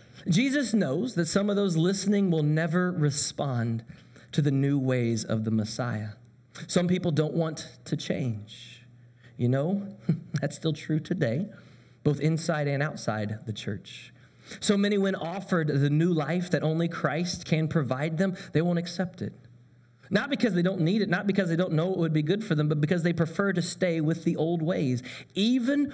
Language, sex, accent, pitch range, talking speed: English, male, American, 125-180 Hz, 185 wpm